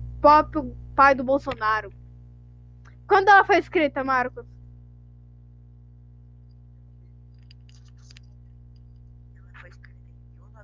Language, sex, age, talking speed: Portuguese, female, 10-29, 75 wpm